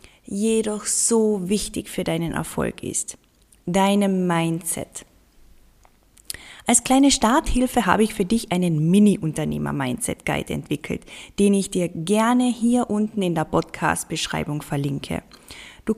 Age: 20-39